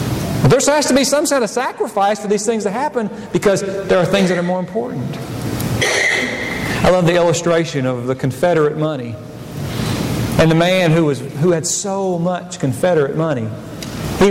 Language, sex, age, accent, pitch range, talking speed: English, male, 40-59, American, 165-245 Hz, 170 wpm